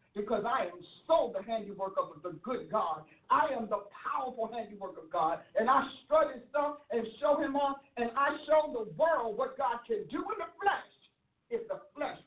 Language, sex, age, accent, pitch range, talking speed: English, male, 50-69, American, 225-295 Hz, 195 wpm